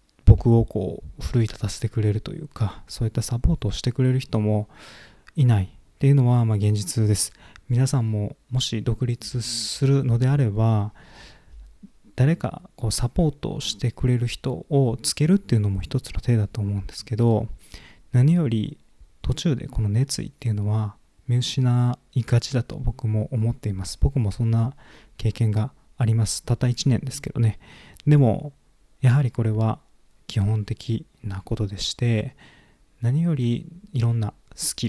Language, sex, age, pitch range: Japanese, male, 20-39, 105-130 Hz